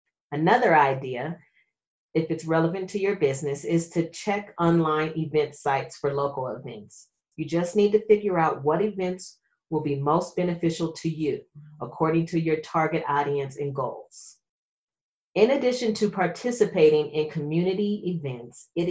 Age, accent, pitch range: 40-59, American, 150-195 Hz